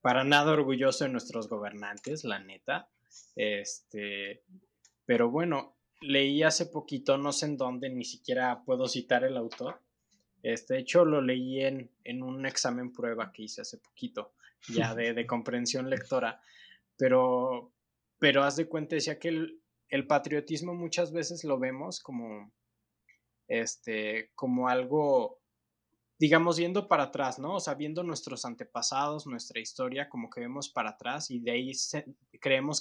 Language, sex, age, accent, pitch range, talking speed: Spanish, male, 20-39, Mexican, 120-150 Hz, 150 wpm